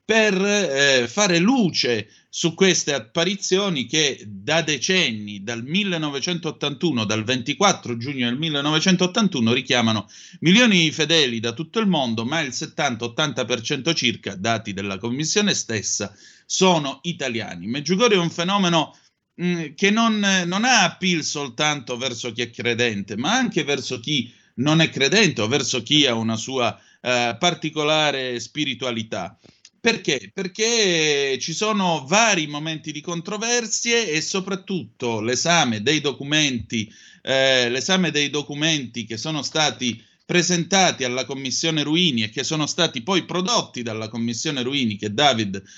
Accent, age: native, 30-49